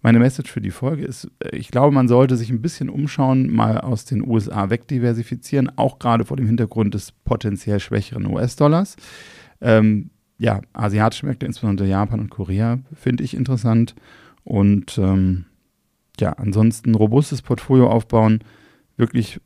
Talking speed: 145 wpm